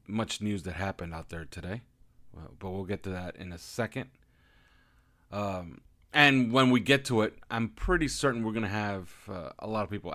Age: 30-49